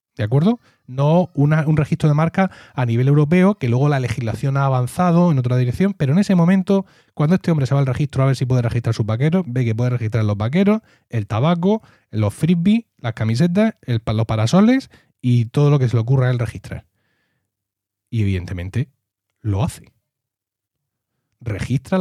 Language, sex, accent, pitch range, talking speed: Spanish, male, Spanish, 115-160 Hz, 185 wpm